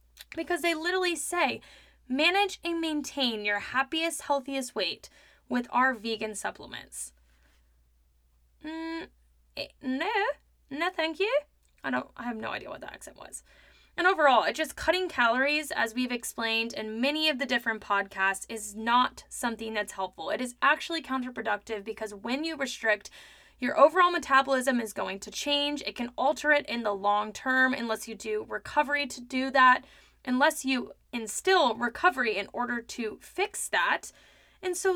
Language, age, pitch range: English, 10-29, 205-290 Hz